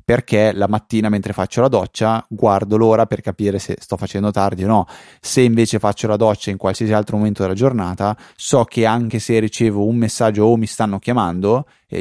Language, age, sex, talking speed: Italian, 20-39, male, 200 wpm